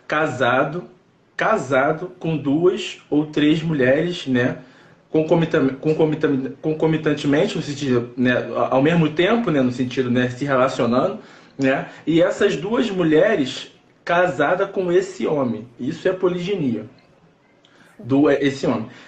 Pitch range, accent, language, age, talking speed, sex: 135-185 Hz, Brazilian, Portuguese, 20-39, 120 wpm, male